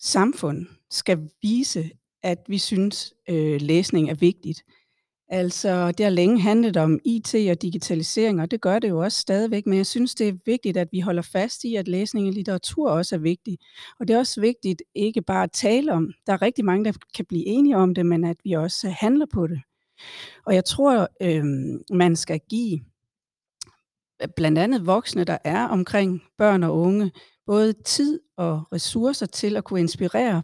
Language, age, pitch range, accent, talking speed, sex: Danish, 40-59, 170-215 Hz, native, 190 wpm, female